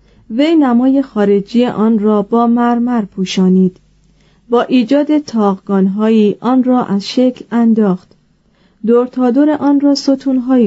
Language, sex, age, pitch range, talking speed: Persian, female, 30-49, 195-245 Hz, 110 wpm